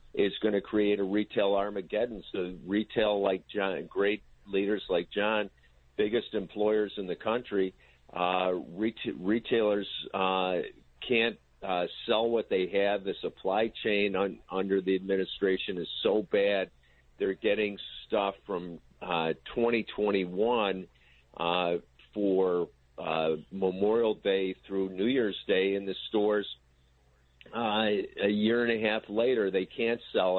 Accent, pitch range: American, 90-105 Hz